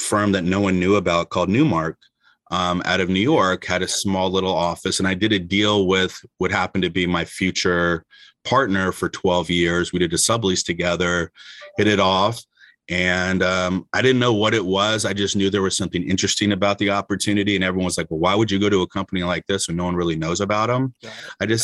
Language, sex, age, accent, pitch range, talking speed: English, male, 30-49, American, 90-105 Hz, 230 wpm